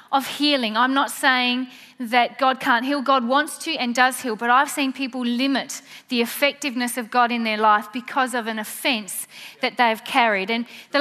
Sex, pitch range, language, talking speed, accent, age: female, 225-275 Hz, English, 195 wpm, Australian, 30-49